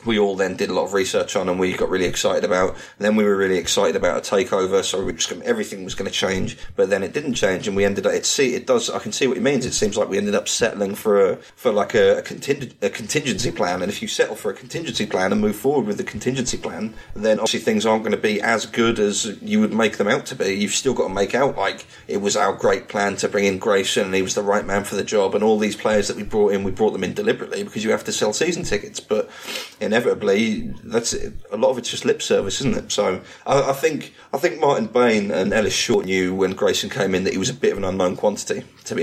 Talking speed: 285 wpm